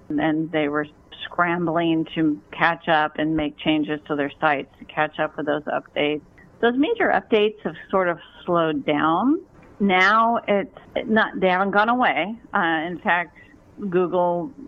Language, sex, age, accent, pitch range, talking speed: English, female, 50-69, American, 155-195 Hz, 145 wpm